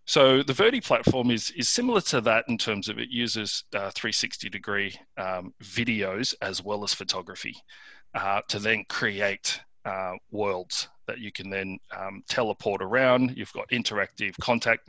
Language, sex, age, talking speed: English, male, 30-49, 160 wpm